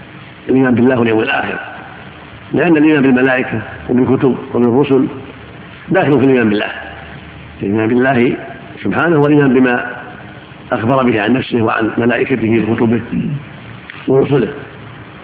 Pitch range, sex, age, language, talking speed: 115-140 Hz, male, 50-69, Arabic, 100 wpm